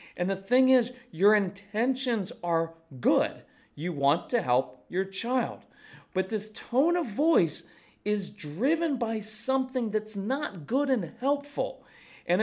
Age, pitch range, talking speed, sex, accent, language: 40-59, 140-225 Hz, 140 wpm, male, American, English